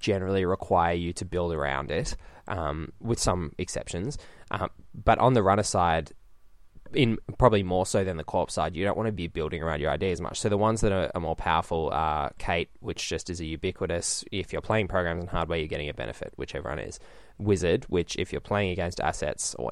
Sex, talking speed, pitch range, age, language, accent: male, 220 wpm, 85-105 Hz, 10-29, English, Australian